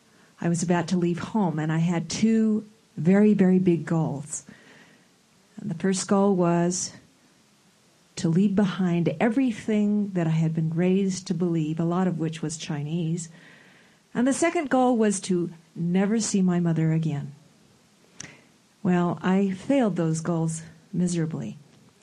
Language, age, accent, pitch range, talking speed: English, 40-59, American, 170-205 Hz, 140 wpm